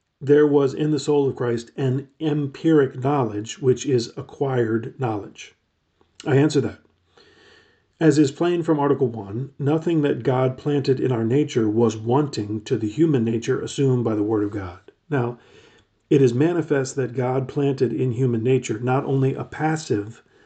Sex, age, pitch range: male, 40-59, 120-145 Hz